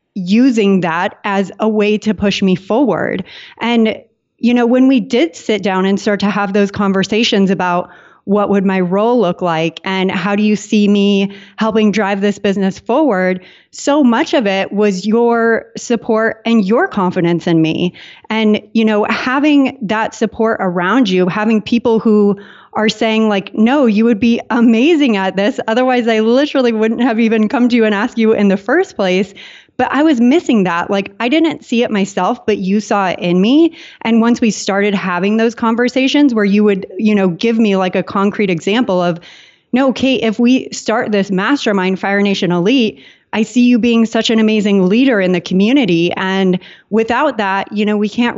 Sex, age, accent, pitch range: female, 30-49, American, 195-230 Hz